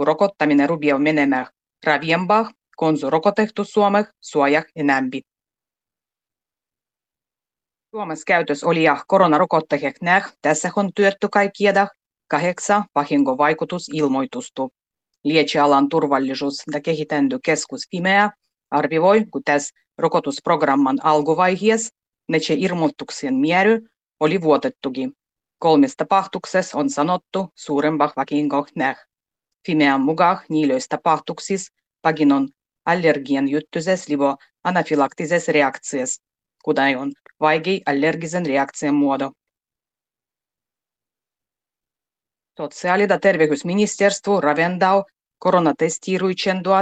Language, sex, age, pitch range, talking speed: Finnish, female, 30-49, 145-185 Hz, 80 wpm